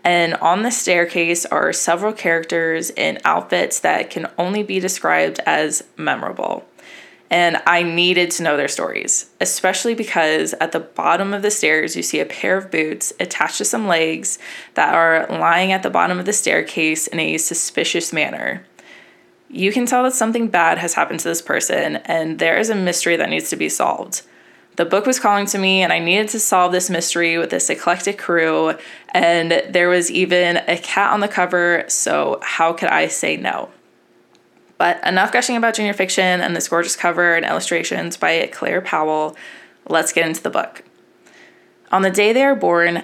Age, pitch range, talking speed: 20-39, 170-210 Hz, 185 wpm